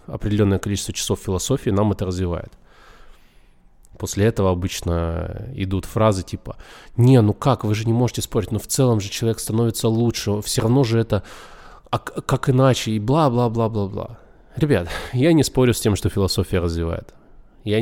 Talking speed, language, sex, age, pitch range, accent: 155 wpm, Russian, male, 20-39, 95-120 Hz, native